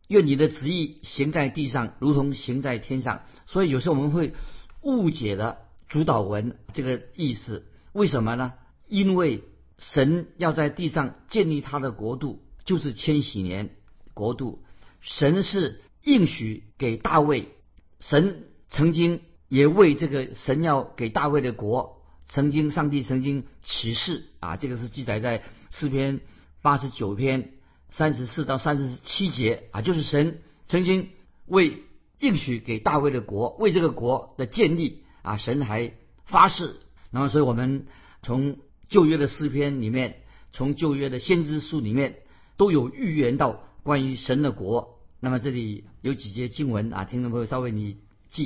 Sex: male